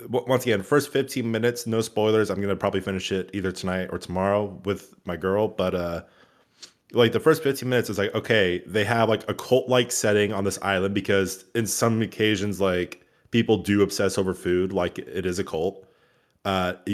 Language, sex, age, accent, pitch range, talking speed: English, male, 20-39, American, 95-120 Hz, 195 wpm